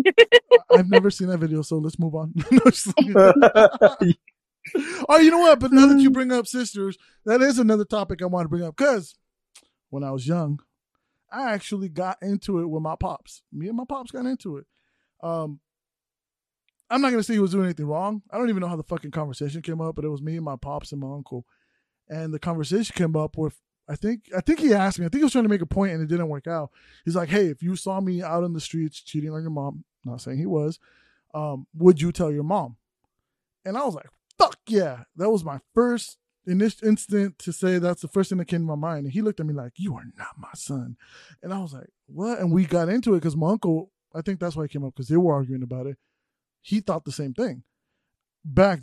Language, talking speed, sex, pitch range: English, 245 wpm, male, 155-205 Hz